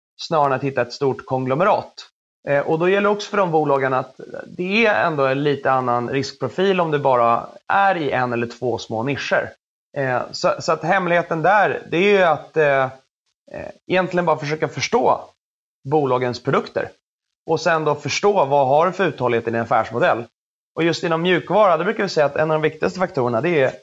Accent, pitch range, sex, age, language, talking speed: native, 125-160 Hz, male, 30-49, Swedish, 200 wpm